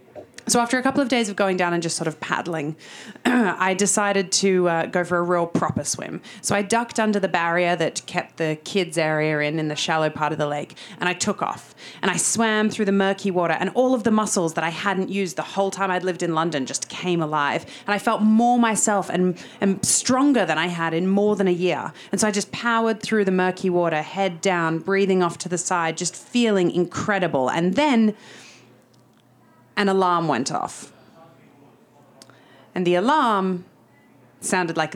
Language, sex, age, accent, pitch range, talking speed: English, female, 30-49, Australian, 175-245 Hz, 205 wpm